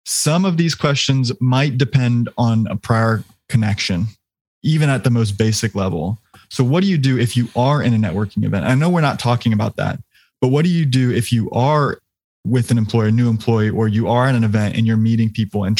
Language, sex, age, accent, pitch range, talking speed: English, male, 20-39, American, 110-130 Hz, 230 wpm